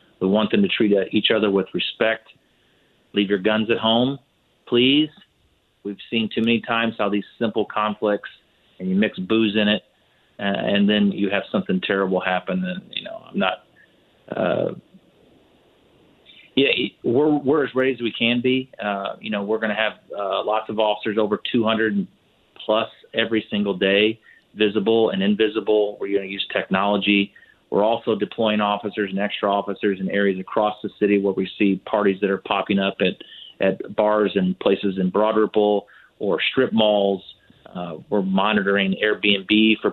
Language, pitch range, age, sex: English, 100-110 Hz, 30-49, male